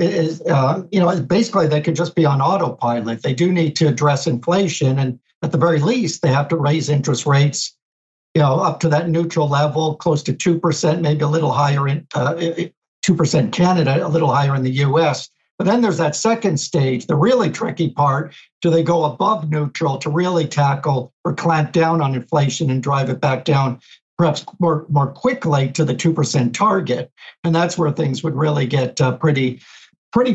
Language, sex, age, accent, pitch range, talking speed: English, male, 60-79, American, 140-170 Hz, 190 wpm